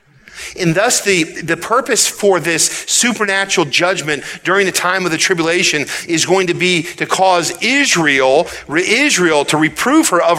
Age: 40-59